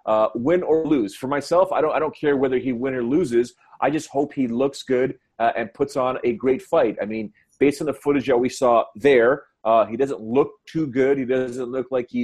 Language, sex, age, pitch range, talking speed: English, male, 30-49, 120-140 Hz, 245 wpm